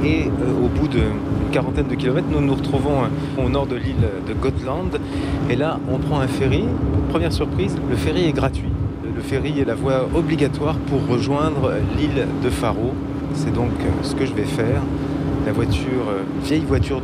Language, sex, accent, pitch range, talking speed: French, male, French, 115-140 Hz, 175 wpm